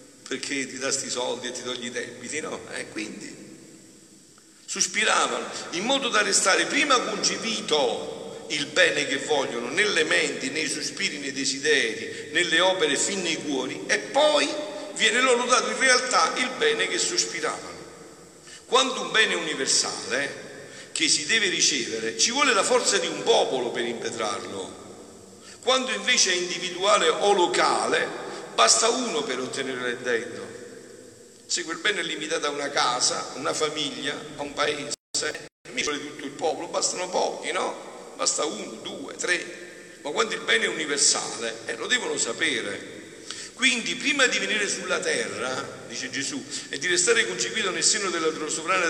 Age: 50-69